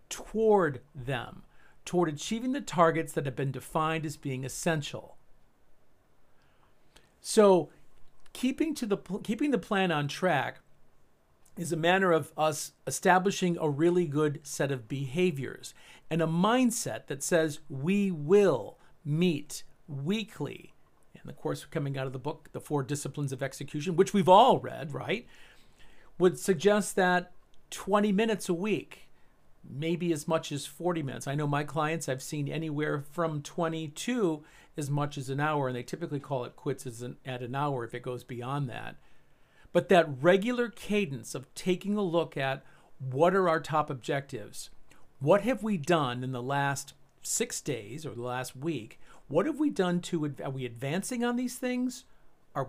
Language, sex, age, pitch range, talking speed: English, male, 50-69, 140-185 Hz, 165 wpm